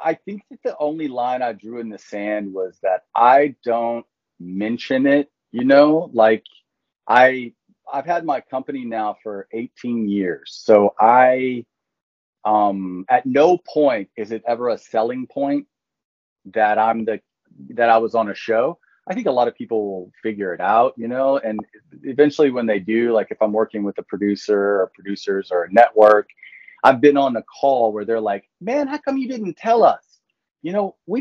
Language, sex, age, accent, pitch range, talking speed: English, male, 30-49, American, 105-145 Hz, 185 wpm